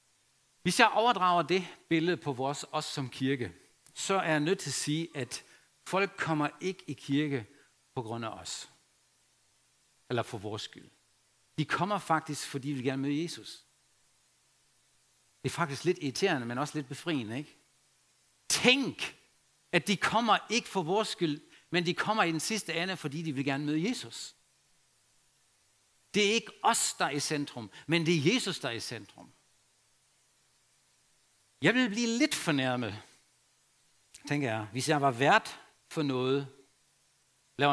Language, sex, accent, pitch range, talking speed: Danish, male, German, 130-170 Hz, 160 wpm